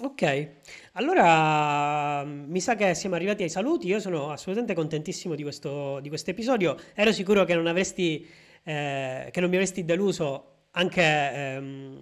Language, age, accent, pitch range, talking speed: Italian, 30-49, native, 145-200 Hz, 145 wpm